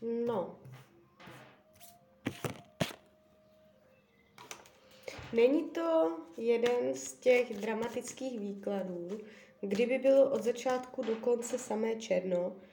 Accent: native